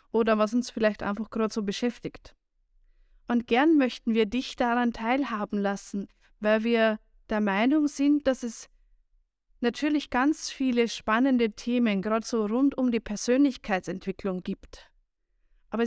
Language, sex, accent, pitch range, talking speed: German, female, German, 215-255 Hz, 135 wpm